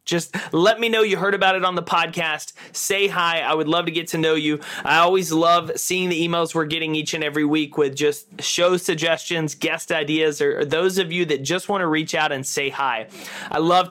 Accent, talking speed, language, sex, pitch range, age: American, 235 wpm, English, male, 150-190 Hz, 30-49